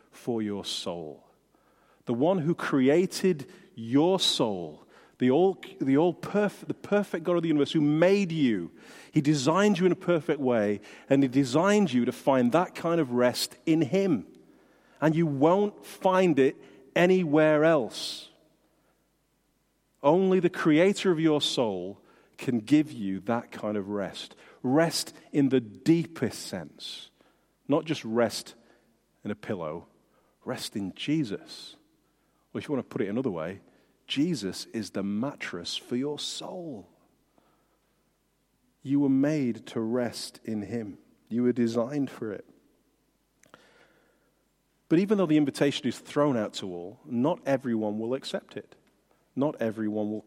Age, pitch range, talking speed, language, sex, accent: 40-59, 120-165 Hz, 145 wpm, English, male, British